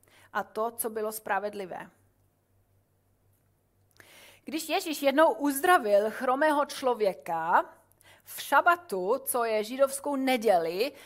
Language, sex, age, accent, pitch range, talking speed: Czech, female, 30-49, native, 200-275 Hz, 90 wpm